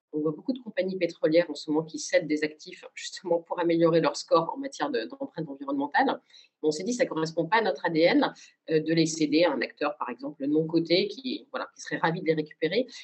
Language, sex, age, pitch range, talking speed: French, female, 30-49, 155-245 Hz, 240 wpm